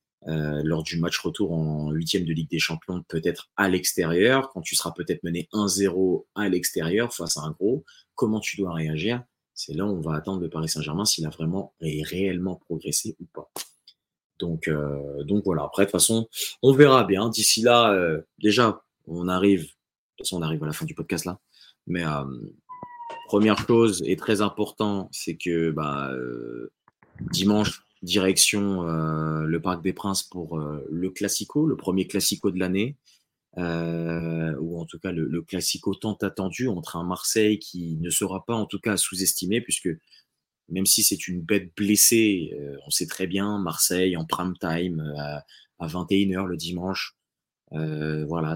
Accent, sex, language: French, male, French